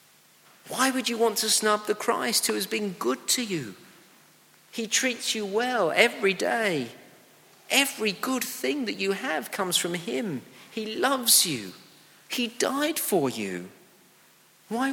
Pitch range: 155-220 Hz